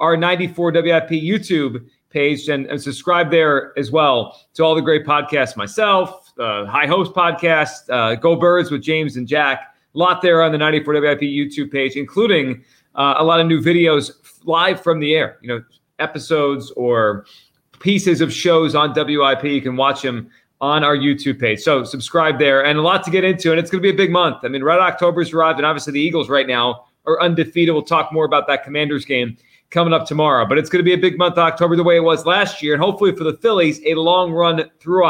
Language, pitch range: English, 135-165 Hz